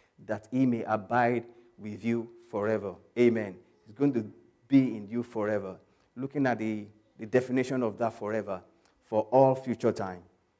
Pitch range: 105-125 Hz